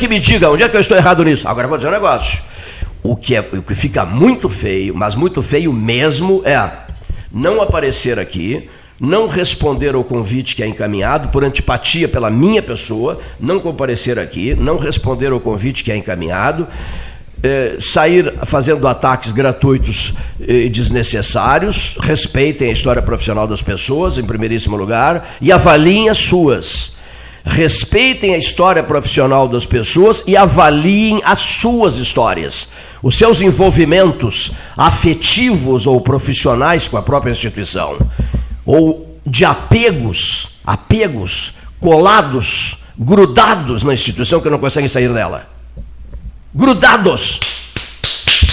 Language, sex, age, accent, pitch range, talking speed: Portuguese, male, 60-79, Brazilian, 105-160 Hz, 130 wpm